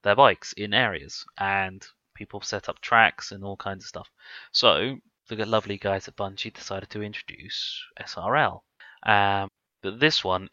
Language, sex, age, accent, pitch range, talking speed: English, male, 20-39, British, 100-110 Hz, 160 wpm